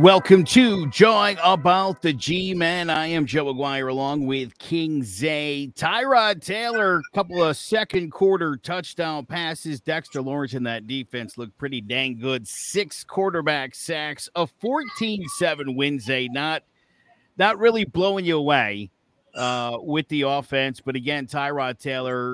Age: 50-69